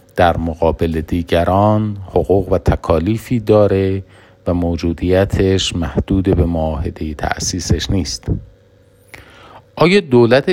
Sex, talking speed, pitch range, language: male, 90 wpm, 80-105 Hz, Persian